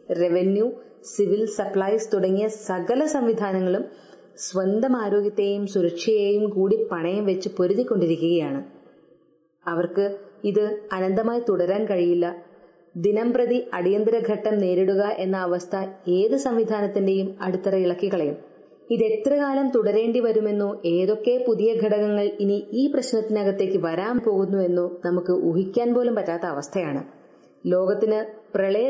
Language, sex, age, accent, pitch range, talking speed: English, female, 30-49, Indian, 185-230 Hz, 85 wpm